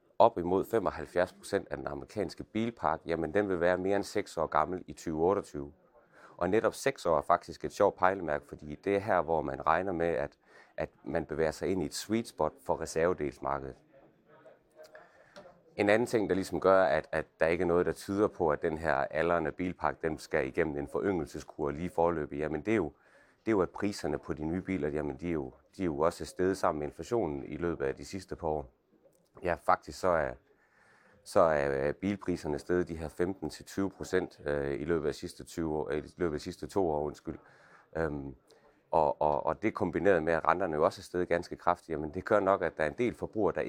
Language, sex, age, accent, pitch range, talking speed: Danish, male, 30-49, native, 75-95 Hz, 205 wpm